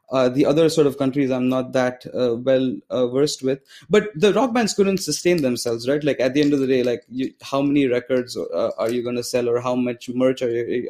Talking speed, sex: 255 wpm, male